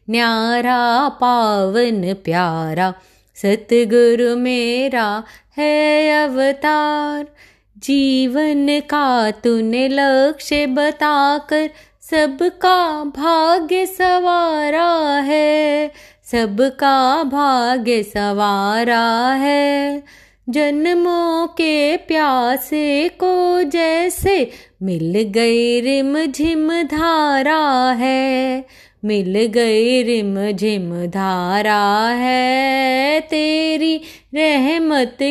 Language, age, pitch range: Hindi, 20-39, 235-300 Hz